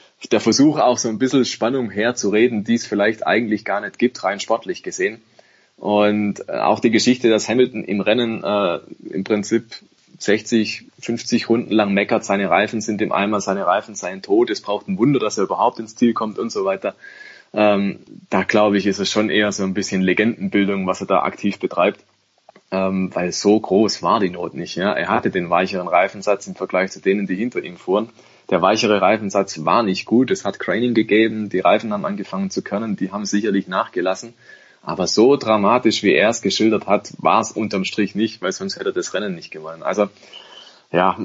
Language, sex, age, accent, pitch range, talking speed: German, male, 20-39, German, 100-120 Hz, 200 wpm